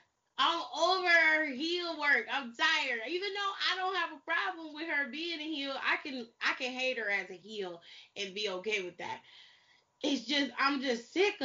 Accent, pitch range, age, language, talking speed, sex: American, 215-310 Hz, 20-39, English, 200 wpm, female